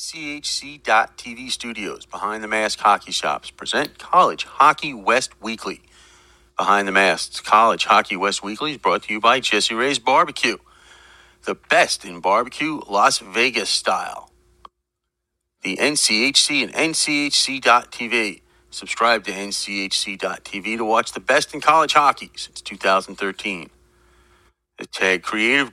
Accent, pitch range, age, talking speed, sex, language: American, 95-135 Hz, 40-59, 125 wpm, male, English